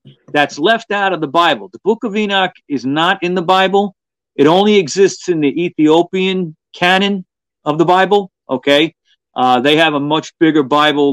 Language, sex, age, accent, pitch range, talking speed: English, male, 40-59, American, 135-175 Hz, 180 wpm